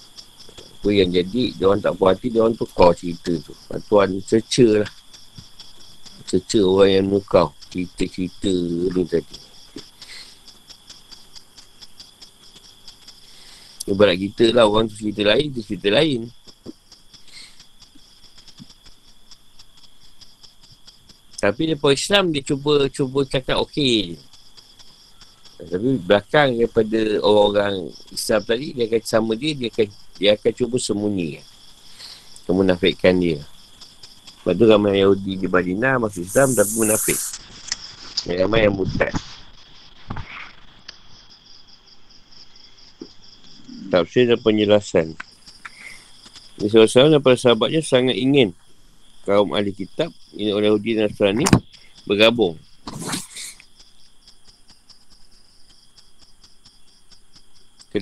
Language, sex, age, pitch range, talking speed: Malay, male, 50-69, 95-115 Hz, 95 wpm